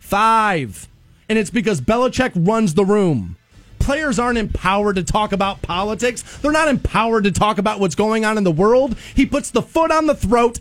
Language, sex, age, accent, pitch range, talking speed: English, male, 30-49, American, 195-245 Hz, 190 wpm